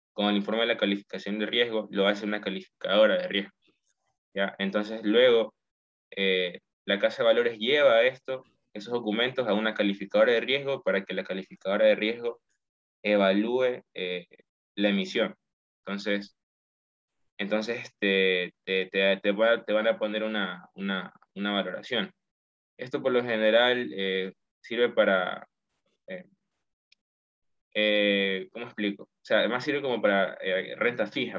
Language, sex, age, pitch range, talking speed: Spanish, male, 20-39, 95-110 Hz, 145 wpm